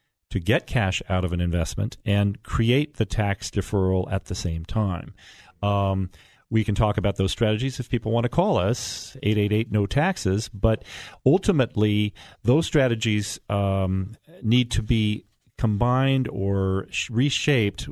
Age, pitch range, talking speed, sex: 40-59, 95-125 Hz, 135 wpm, male